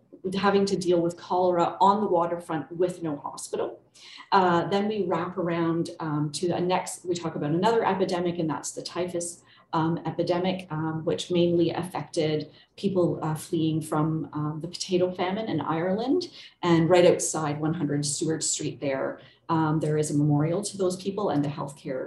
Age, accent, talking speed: 40-59, American, 170 wpm